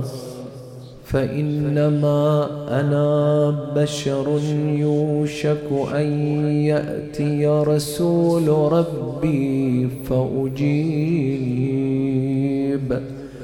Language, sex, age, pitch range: English, male, 30-49, 130-150 Hz